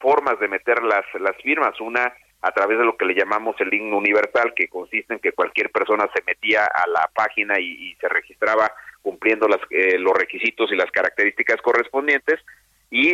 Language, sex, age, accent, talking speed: Spanish, male, 40-59, Mexican, 190 wpm